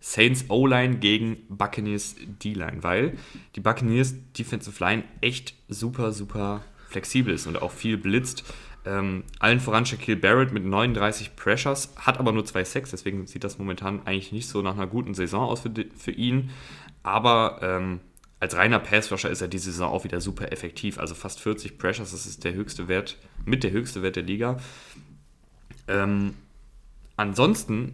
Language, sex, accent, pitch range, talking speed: German, male, German, 100-130 Hz, 160 wpm